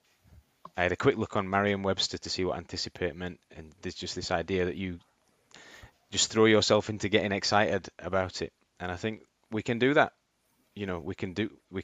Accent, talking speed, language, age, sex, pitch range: British, 210 wpm, English, 20-39, male, 90-110 Hz